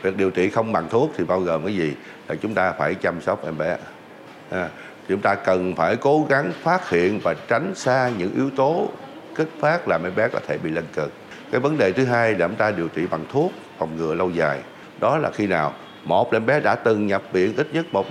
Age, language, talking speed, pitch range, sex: 60-79, Vietnamese, 245 wpm, 85-120 Hz, male